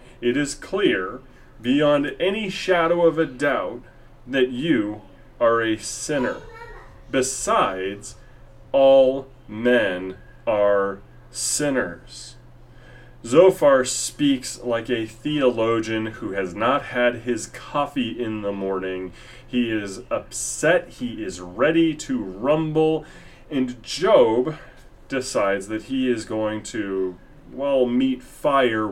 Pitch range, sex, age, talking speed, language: 110-145 Hz, male, 30-49, 110 wpm, English